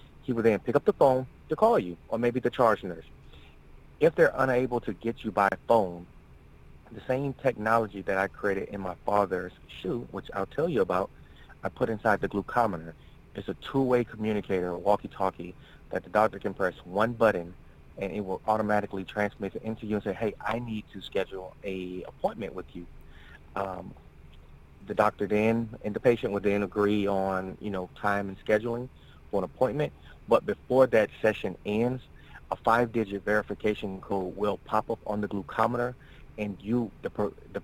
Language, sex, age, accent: English, male, 30-49, American